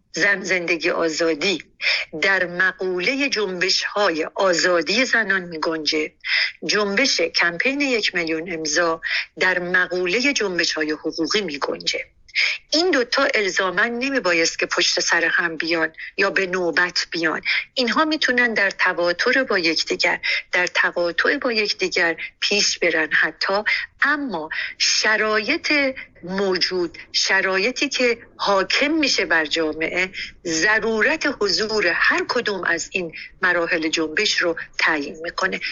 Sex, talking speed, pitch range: female, 115 wpm, 170-245 Hz